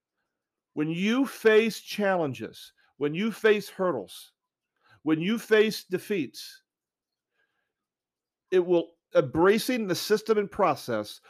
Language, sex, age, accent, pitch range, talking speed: English, male, 50-69, American, 130-180 Hz, 100 wpm